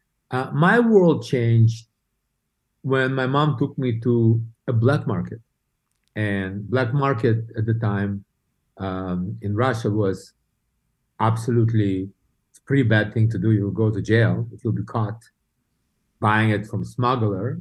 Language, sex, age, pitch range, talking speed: English, male, 50-69, 110-130 Hz, 145 wpm